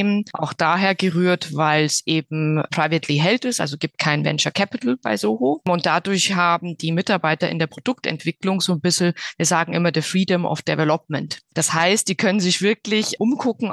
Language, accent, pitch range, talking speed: German, German, 155-190 Hz, 180 wpm